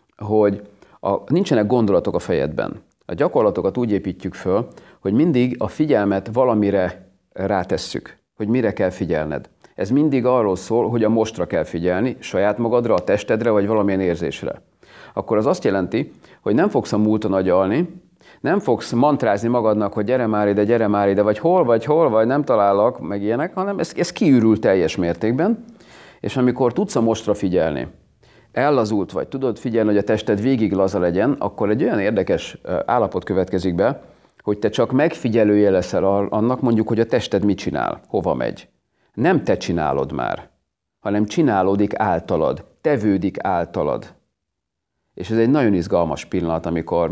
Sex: male